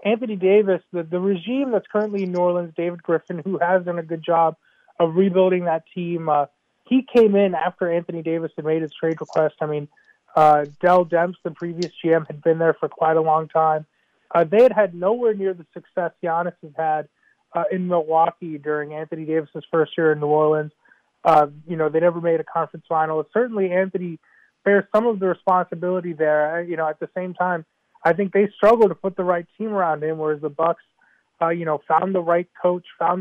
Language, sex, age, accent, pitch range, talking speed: English, male, 30-49, American, 160-185 Hz, 215 wpm